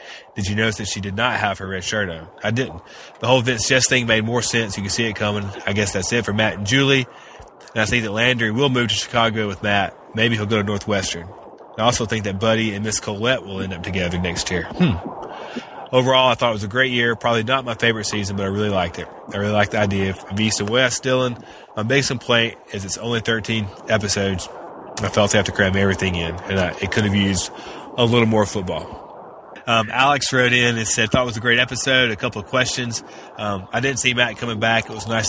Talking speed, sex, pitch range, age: 250 wpm, male, 100-120 Hz, 30-49